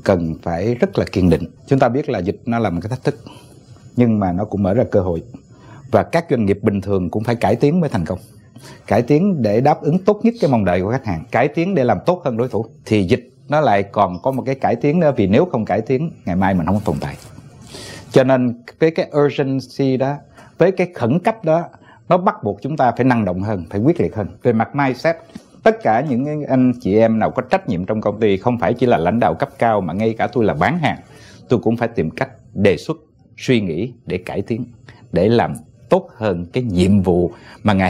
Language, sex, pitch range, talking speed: Vietnamese, male, 100-135 Hz, 250 wpm